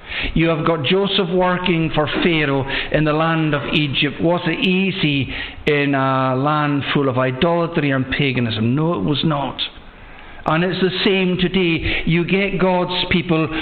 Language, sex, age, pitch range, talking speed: English, male, 60-79, 140-180 Hz, 160 wpm